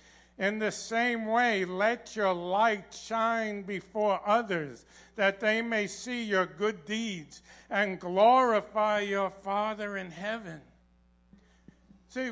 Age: 60-79